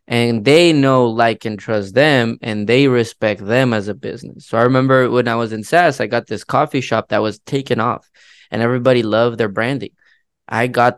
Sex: male